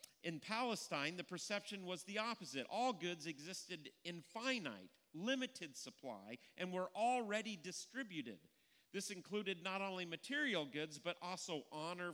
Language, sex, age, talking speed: English, male, 40-59, 135 wpm